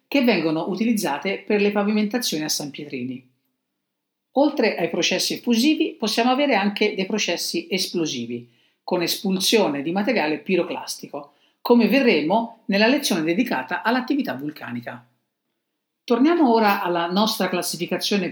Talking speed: 120 wpm